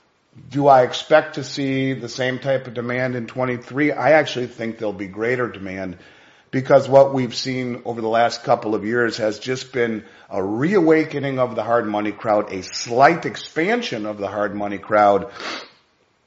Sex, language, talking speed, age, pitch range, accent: male, English, 175 wpm, 50-69, 105-135 Hz, American